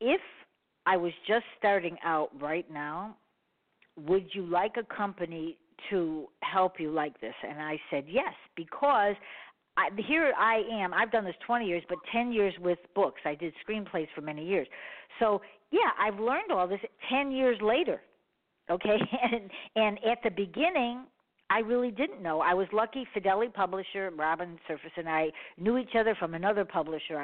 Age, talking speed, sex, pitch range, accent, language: 50-69, 165 wpm, female, 170-220 Hz, American, English